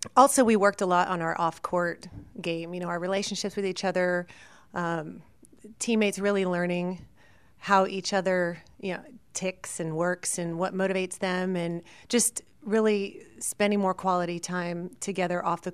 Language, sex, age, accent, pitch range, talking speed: English, female, 30-49, American, 165-195 Hz, 165 wpm